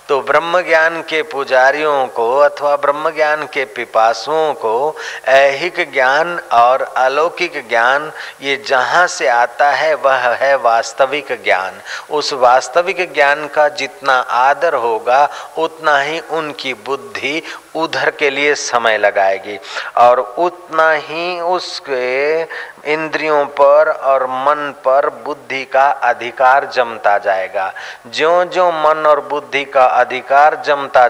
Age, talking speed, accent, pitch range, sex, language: 40-59, 125 wpm, native, 130-155 Hz, male, Hindi